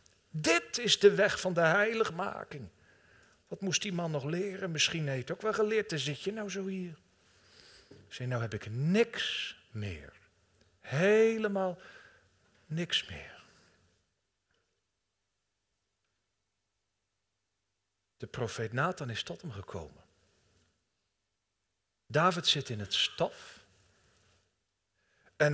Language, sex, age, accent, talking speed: Dutch, male, 50-69, Dutch, 115 wpm